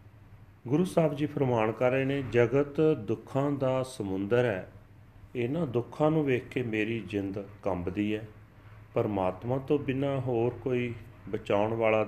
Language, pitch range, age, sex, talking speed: Punjabi, 105-125 Hz, 40-59, male, 140 wpm